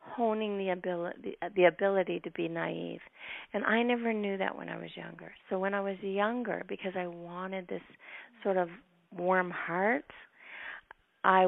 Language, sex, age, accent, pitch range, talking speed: English, female, 40-59, American, 180-230 Hz, 160 wpm